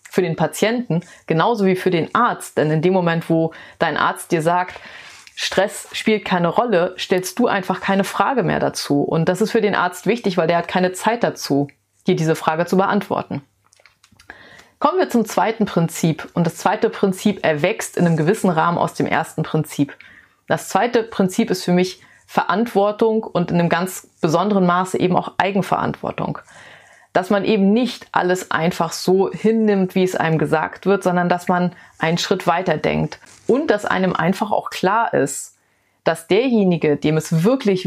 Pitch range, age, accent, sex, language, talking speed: 165-205 Hz, 30-49, German, female, German, 175 wpm